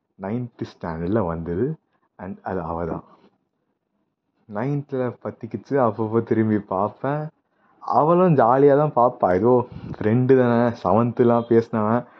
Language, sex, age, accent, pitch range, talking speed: Tamil, male, 30-49, native, 100-135 Hz, 105 wpm